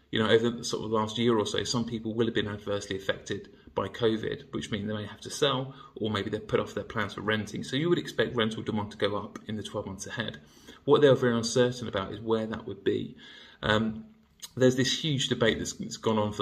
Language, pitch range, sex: English, 105-125 Hz, male